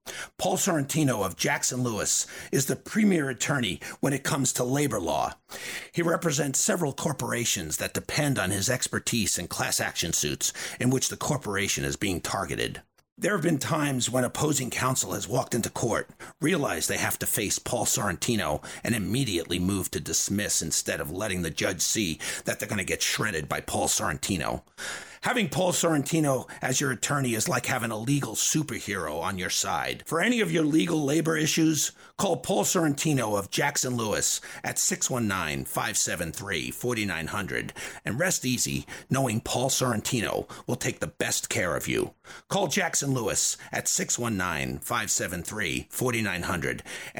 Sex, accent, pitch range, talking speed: male, American, 115-155 Hz, 155 wpm